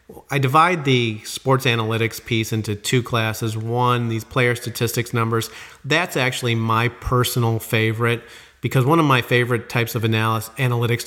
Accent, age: American, 40-59